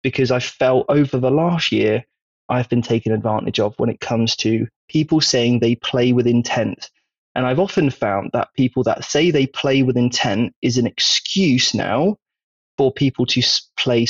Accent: British